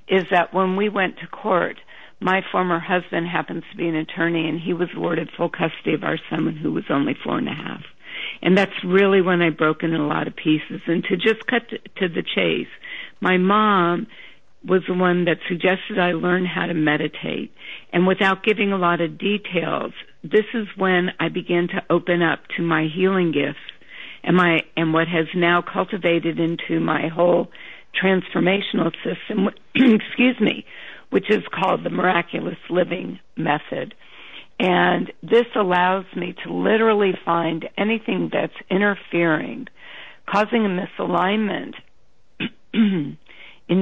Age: 50-69